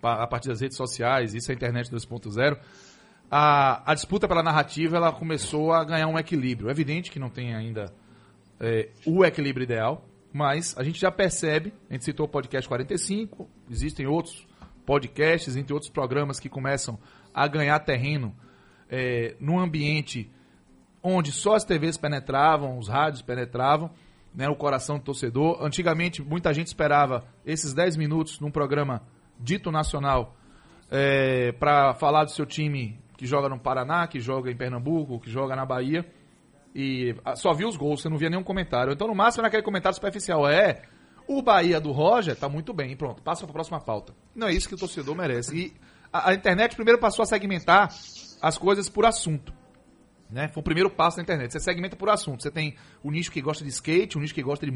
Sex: male